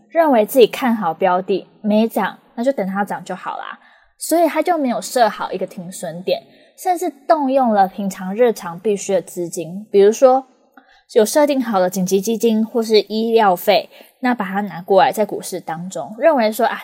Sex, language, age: female, Chinese, 20-39